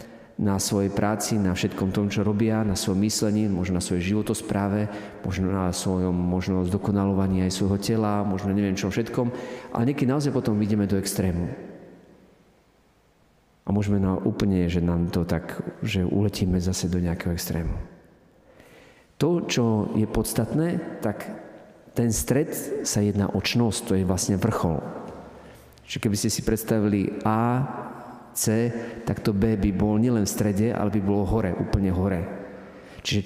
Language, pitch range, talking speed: Slovak, 100-120 Hz, 150 wpm